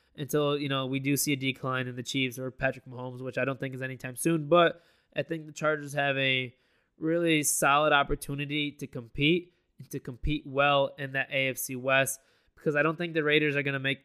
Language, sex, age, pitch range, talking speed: English, male, 20-39, 135-155 Hz, 220 wpm